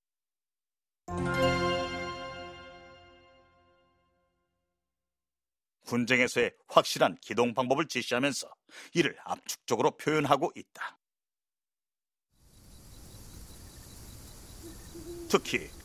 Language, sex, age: Korean, male, 40-59